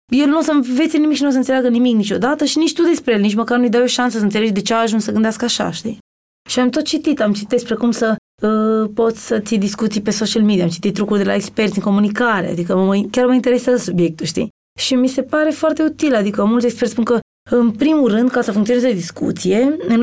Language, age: Romanian, 20-39